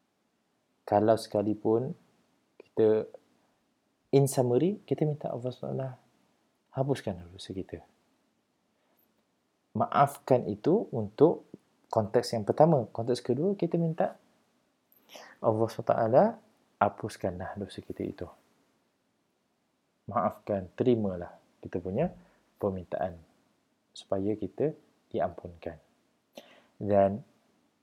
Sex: male